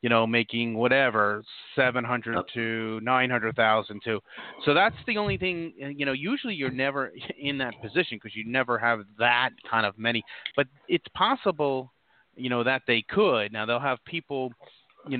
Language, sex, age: English, male, 30-49